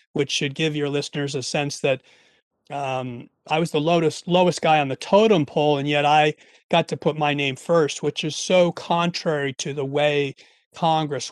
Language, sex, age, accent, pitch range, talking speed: English, male, 40-59, American, 135-155 Hz, 190 wpm